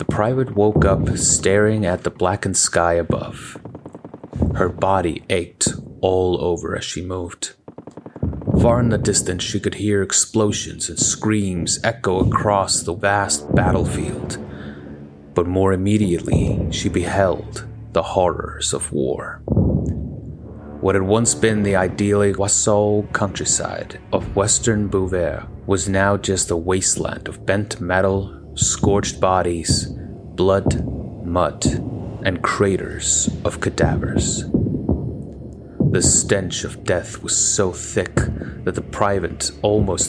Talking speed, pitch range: 120 wpm, 90-105 Hz